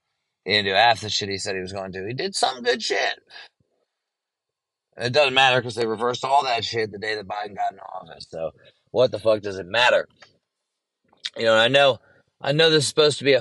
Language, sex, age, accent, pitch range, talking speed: English, male, 30-49, American, 100-130 Hz, 230 wpm